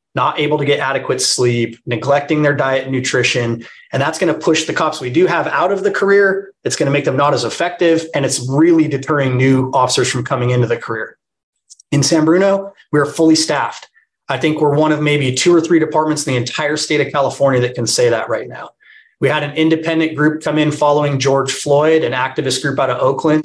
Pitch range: 130-155 Hz